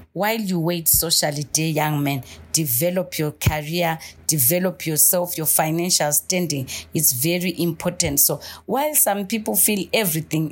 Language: English